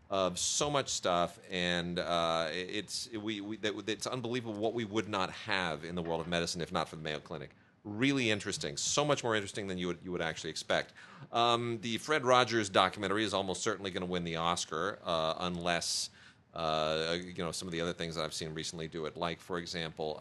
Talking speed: 220 wpm